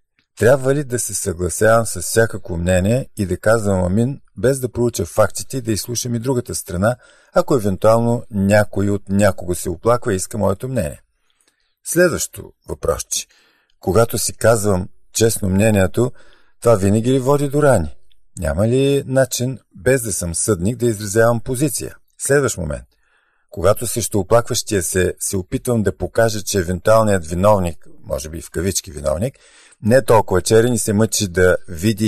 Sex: male